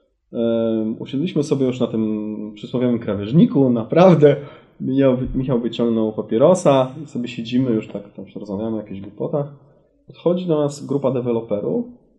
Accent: native